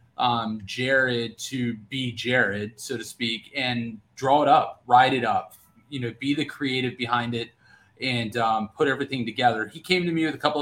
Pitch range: 115-140 Hz